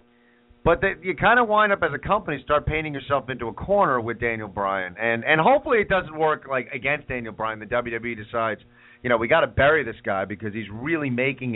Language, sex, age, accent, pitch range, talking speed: English, male, 40-59, American, 120-170 Hz, 230 wpm